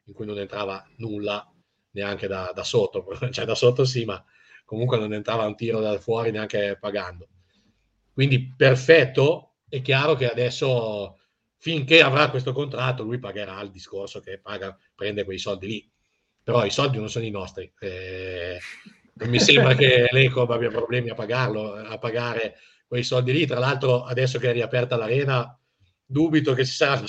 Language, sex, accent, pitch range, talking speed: Italian, male, native, 100-130 Hz, 170 wpm